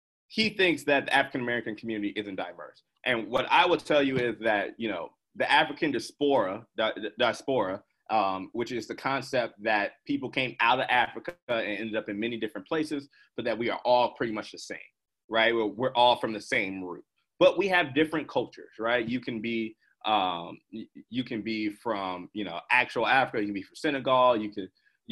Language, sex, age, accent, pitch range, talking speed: English, male, 30-49, American, 110-165 Hz, 205 wpm